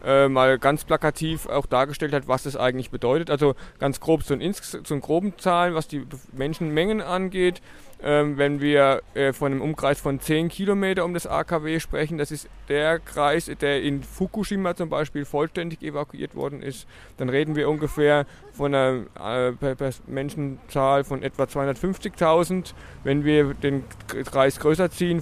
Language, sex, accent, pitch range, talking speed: German, male, German, 135-155 Hz, 150 wpm